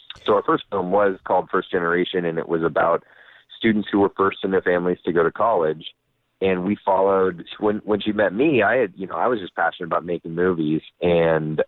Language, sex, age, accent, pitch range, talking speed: English, male, 30-49, American, 85-105 Hz, 220 wpm